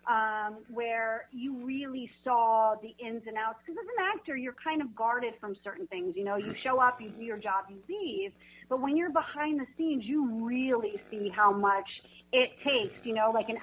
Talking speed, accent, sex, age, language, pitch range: 210 wpm, American, female, 40-59, English, 215-275 Hz